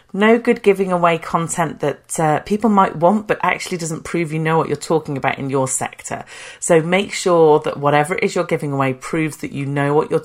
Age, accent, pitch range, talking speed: 40-59, British, 150-205 Hz, 230 wpm